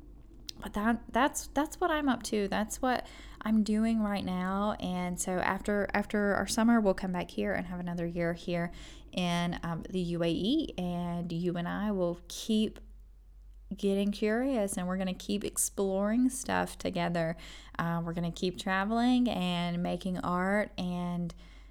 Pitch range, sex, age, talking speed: 175-215 Hz, female, 10-29, 165 wpm